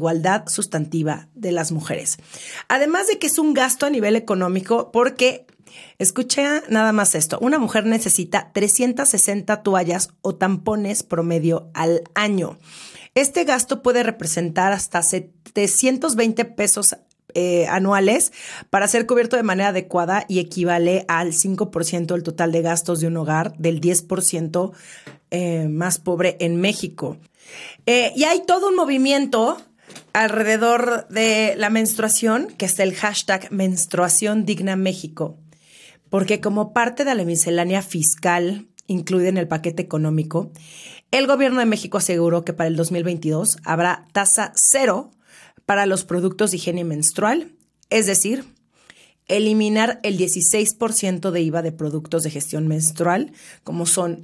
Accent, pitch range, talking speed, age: Mexican, 170-225 Hz, 135 wpm, 30-49